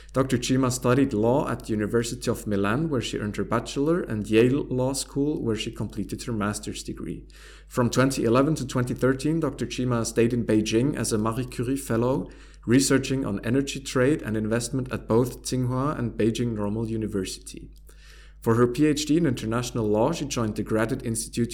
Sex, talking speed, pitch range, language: male, 175 wpm, 110-130 Hz, English